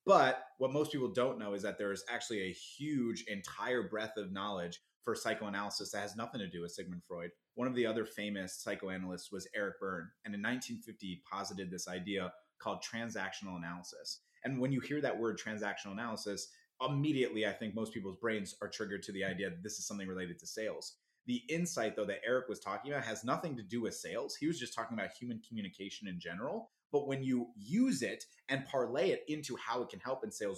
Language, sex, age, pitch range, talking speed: English, male, 30-49, 95-130 Hz, 215 wpm